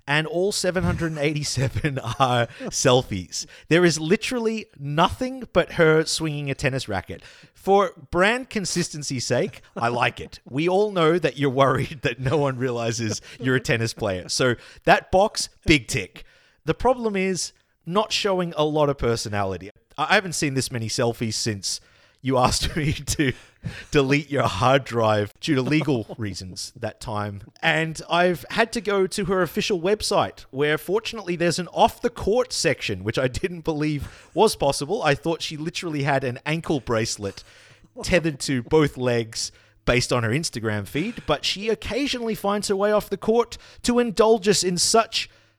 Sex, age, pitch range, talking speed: male, 30-49, 120-185 Hz, 165 wpm